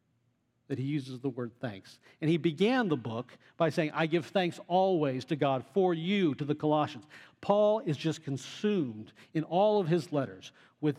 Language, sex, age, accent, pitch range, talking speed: English, male, 50-69, American, 120-160 Hz, 185 wpm